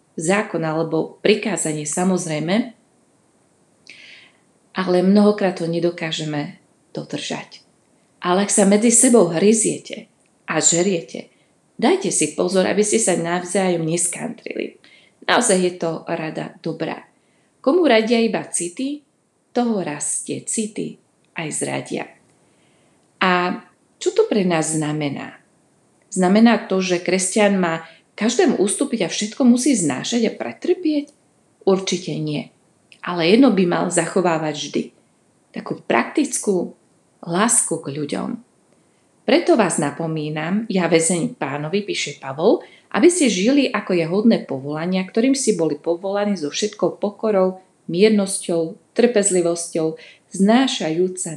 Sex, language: female, Slovak